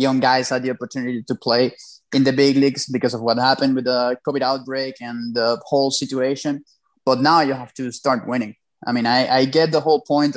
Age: 20-39